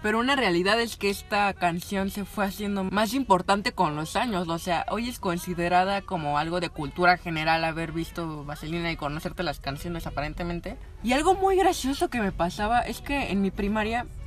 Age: 20-39